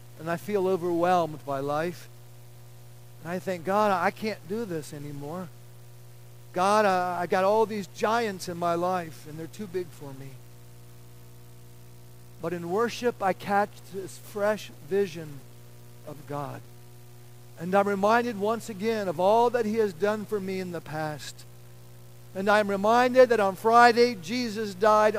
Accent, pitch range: American, 120-200 Hz